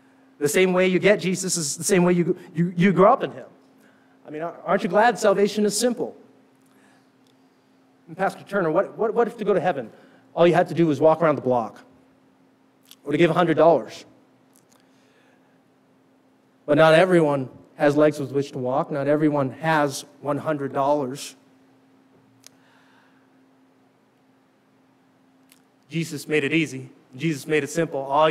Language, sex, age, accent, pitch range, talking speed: English, male, 30-49, American, 145-185 Hz, 155 wpm